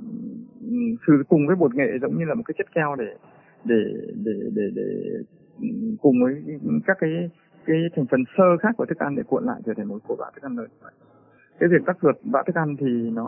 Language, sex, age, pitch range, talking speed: Vietnamese, male, 20-39, 135-180 Hz, 220 wpm